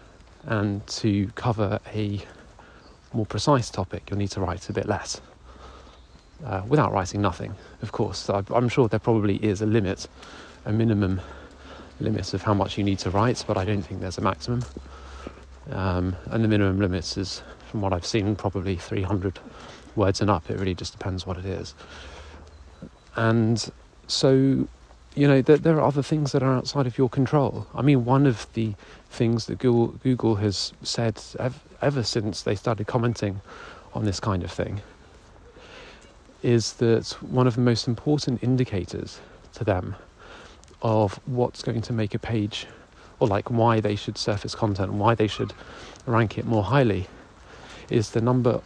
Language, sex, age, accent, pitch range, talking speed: English, male, 30-49, British, 95-120 Hz, 170 wpm